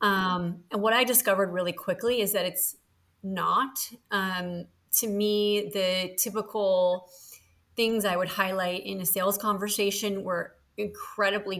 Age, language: 30-49, English